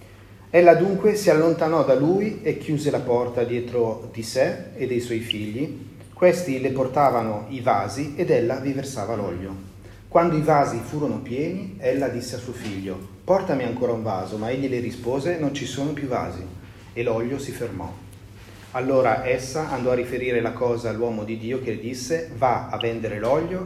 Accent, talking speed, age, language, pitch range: native, 180 wpm, 30-49, Italian, 105-135 Hz